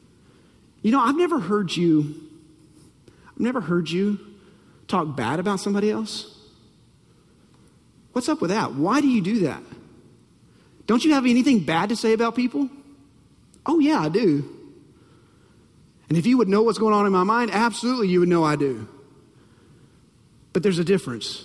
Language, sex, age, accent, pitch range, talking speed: English, male, 30-49, American, 180-290 Hz, 160 wpm